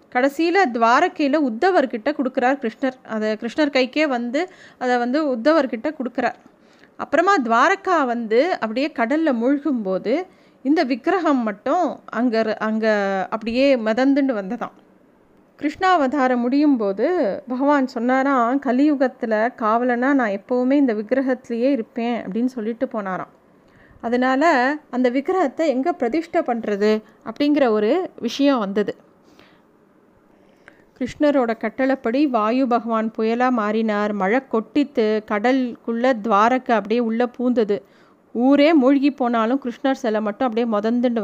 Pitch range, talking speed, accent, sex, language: 230-285 Hz, 105 wpm, native, female, Tamil